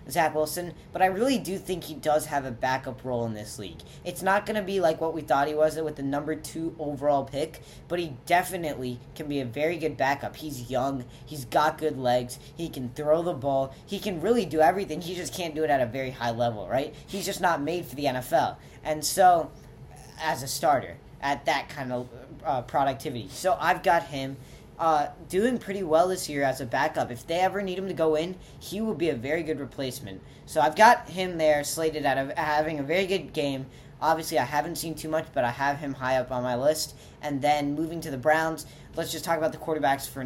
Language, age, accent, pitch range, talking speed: English, 10-29, American, 135-170 Hz, 235 wpm